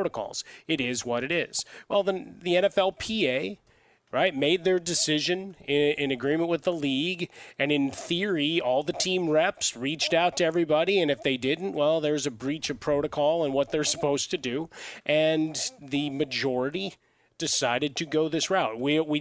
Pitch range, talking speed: 140-170 Hz, 180 wpm